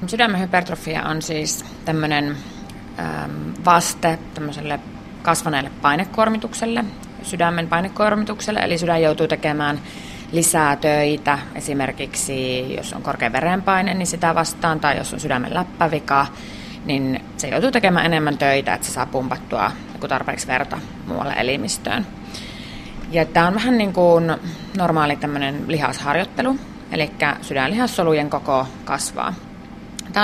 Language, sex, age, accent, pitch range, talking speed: Finnish, female, 20-39, native, 145-195 Hz, 105 wpm